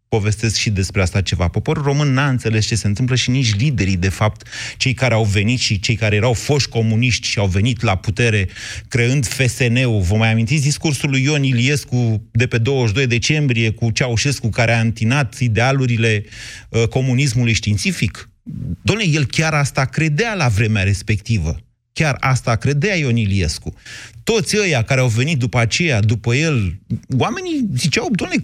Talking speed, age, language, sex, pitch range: 165 wpm, 30-49, Romanian, male, 115-160 Hz